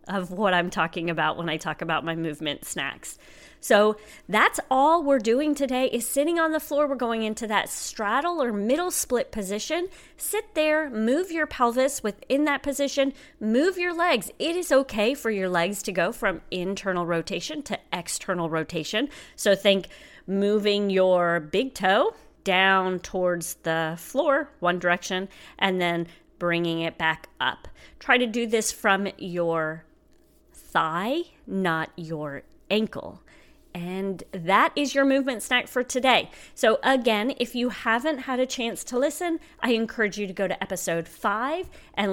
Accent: American